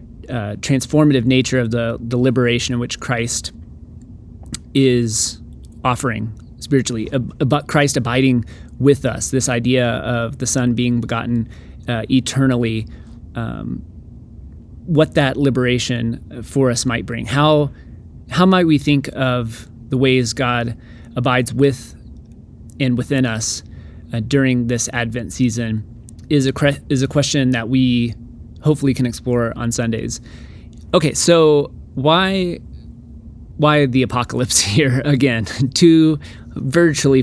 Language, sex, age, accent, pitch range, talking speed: English, male, 30-49, American, 115-135 Hz, 125 wpm